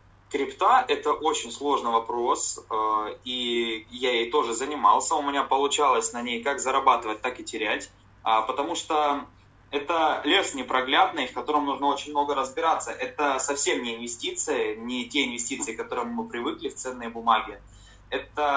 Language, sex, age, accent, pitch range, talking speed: Russian, male, 20-39, native, 115-145 Hz, 150 wpm